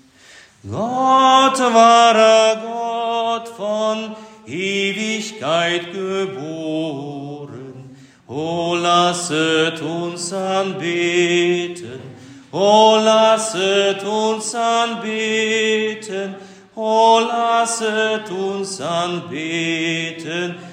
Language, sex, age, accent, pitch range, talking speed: German, male, 40-59, German, 165-220 Hz, 50 wpm